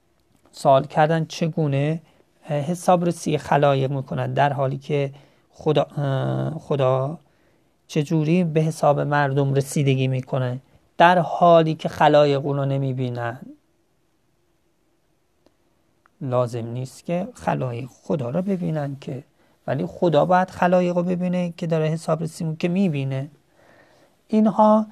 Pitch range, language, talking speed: 135-175 Hz, Persian, 105 wpm